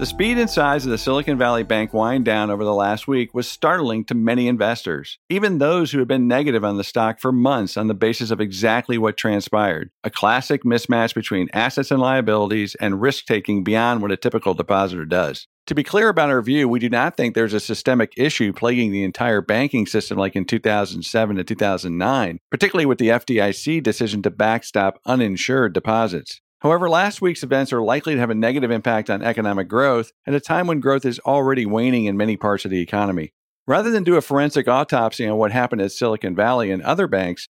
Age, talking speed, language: 50-69, 205 wpm, English